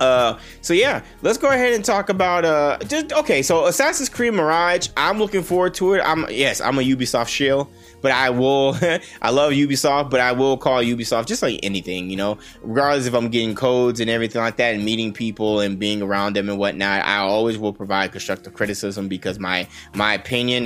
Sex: male